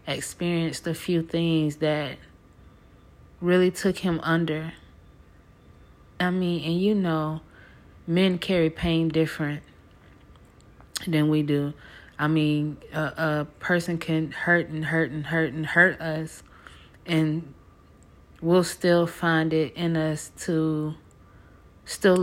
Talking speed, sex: 120 wpm, female